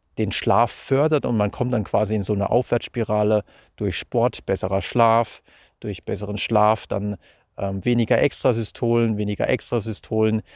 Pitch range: 105-115 Hz